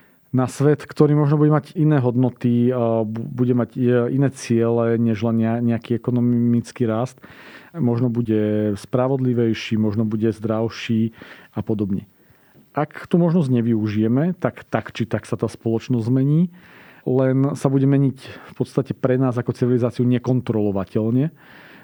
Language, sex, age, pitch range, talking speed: Slovak, male, 40-59, 115-140 Hz, 130 wpm